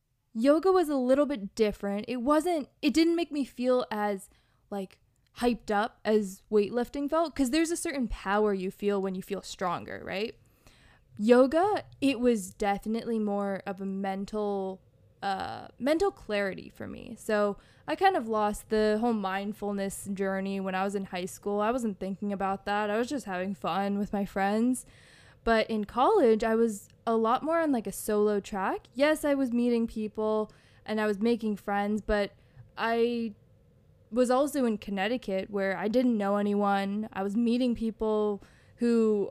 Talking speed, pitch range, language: 170 wpm, 195-240 Hz, English